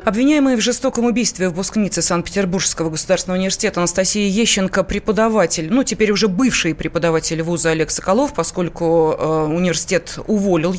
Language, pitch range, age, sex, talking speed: Russian, 175-230 Hz, 20-39, female, 135 wpm